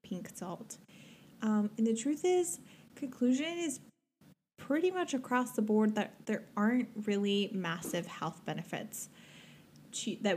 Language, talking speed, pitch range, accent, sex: English, 120 wpm, 185-230 Hz, American, female